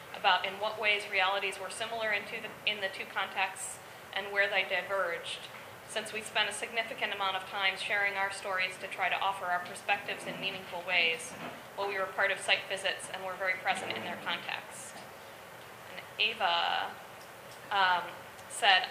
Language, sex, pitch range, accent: English, female, 190-215 Hz, American